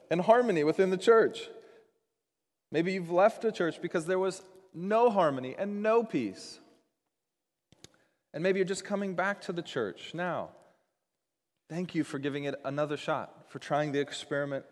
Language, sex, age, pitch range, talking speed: English, male, 30-49, 135-185 Hz, 160 wpm